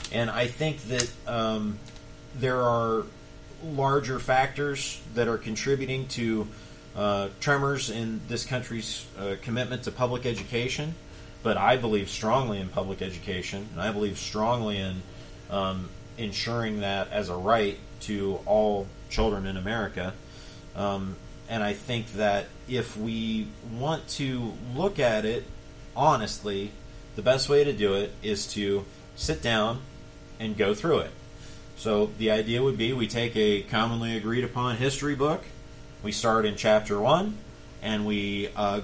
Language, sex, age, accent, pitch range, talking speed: English, male, 40-59, American, 100-125 Hz, 145 wpm